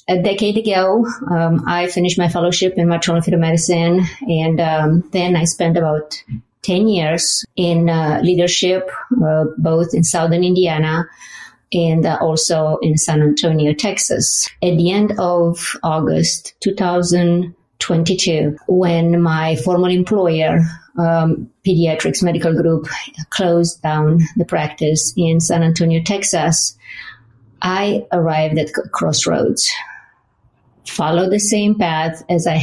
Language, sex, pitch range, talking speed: English, female, 160-180 Hz, 125 wpm